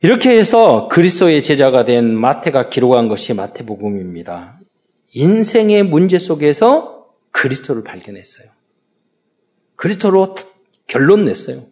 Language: Korean